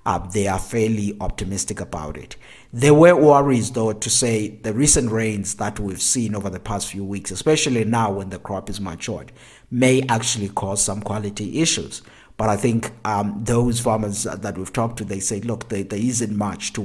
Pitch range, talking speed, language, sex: 100-120 Hz, 195 wpm, English, male